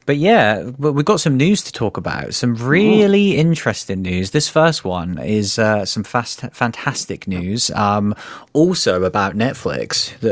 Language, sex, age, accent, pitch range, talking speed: English, male, 30-49, British, 100-130 Hz, 155 wpm